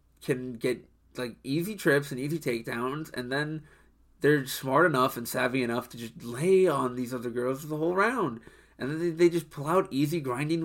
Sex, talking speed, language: male, 205 wpm, English